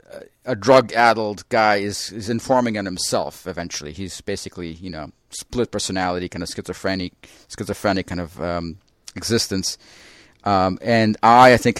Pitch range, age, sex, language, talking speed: 95-120 Hz, 40-59, male, English, 155 wpm